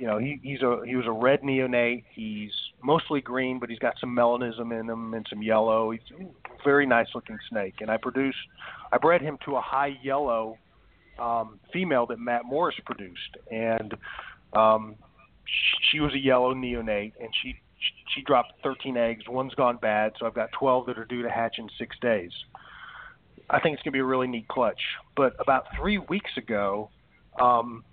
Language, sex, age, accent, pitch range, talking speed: English, male, 40-59, American, 115-135 Hz, 190 wpm